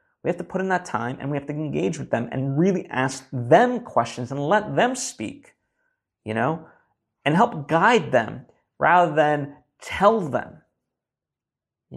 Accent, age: American, 30-49